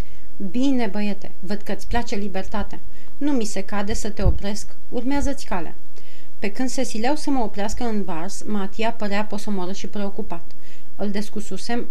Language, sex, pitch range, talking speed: Romanian, female, 190-235 Hz, 155 wpm